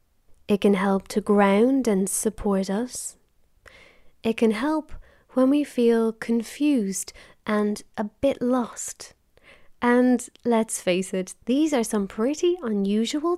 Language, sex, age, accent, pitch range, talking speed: English, female, 20-39, British, 200-250 Hz, 125 wpm